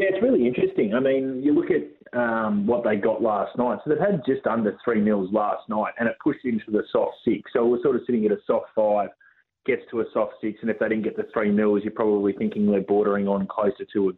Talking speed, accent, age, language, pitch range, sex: 265 wpm, Australian, 30-49, English, 105-135 Hz, male